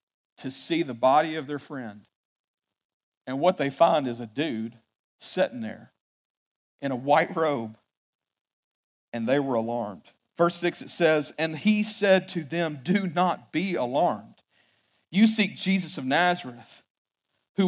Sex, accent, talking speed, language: male, American, 145 wpm, English